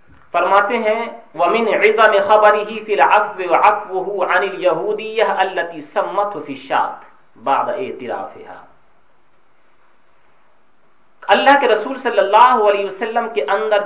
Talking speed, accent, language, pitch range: 115 wpm, Indian, English, 145-210 Hz